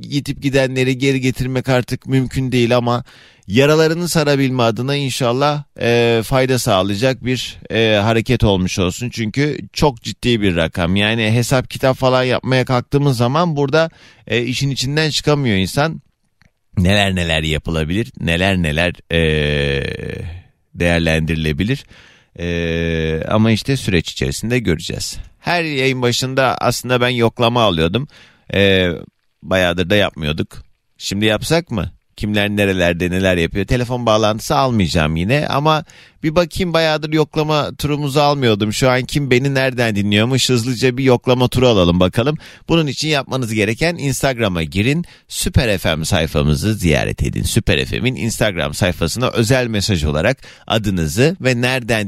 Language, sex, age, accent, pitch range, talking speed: Turkish, male, 40-59, native, 95-130 Hz, 130 wpm